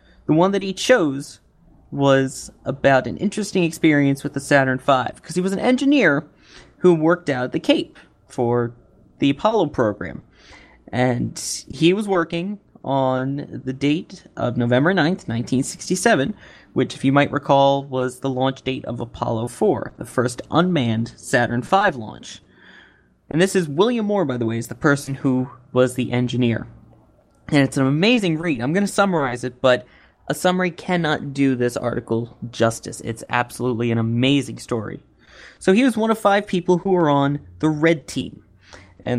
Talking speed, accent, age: 165 wpm, American, 20-39